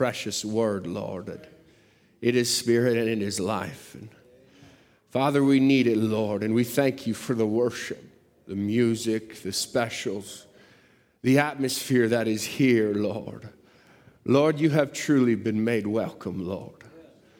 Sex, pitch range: male, 105-135 Hz